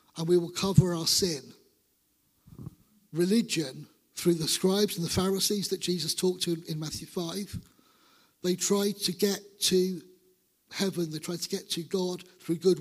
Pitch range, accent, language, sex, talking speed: 165-190 Hz, British, English, male, 160 wpm